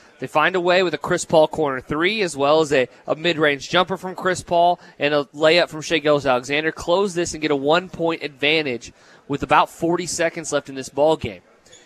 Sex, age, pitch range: male, 20-39, 150-185 Hz